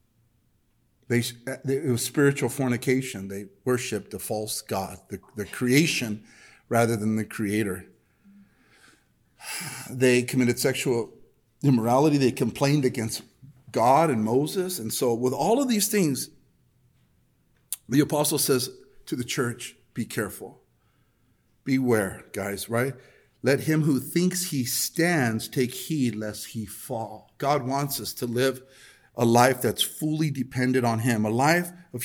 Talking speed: 135 wpm